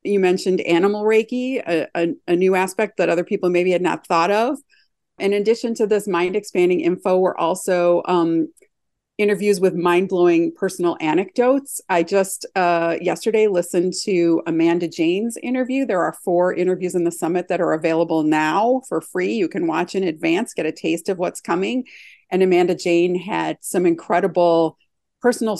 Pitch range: 170-205 Hz